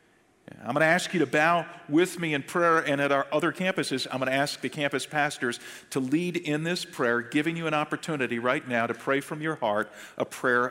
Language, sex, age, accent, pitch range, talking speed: English, male, 50-69, American, 115-140 Hz, 230 wpm